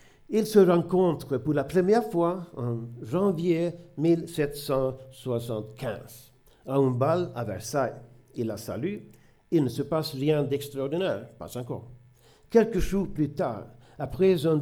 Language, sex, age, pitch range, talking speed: French, male, 60-79, 125-170 Hz, 130 wpm